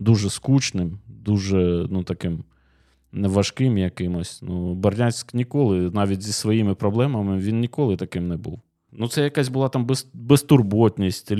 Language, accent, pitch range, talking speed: Ukrainian, native, 100-120 Hz, 135 wpm